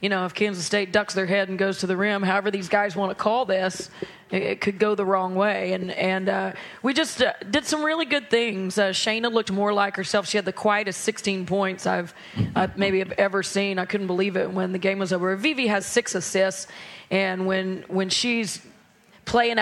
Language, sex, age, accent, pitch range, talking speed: English, female, 30-49, American, 190-210 Hz, 225 wpm